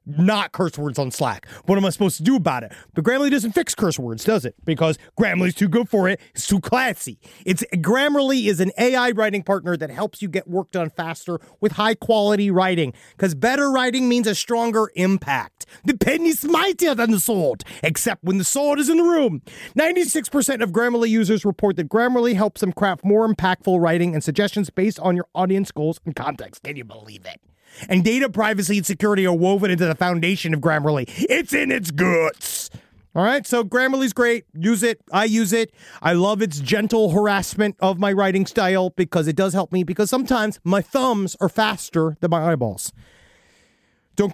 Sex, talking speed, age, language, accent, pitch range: male, 200 wpm, 30-49, English, American, 175-235 Hz